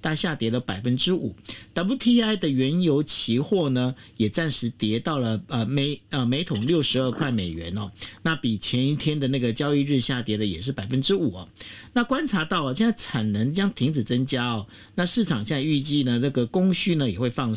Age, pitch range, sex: 50-69, 115-175 Hz, male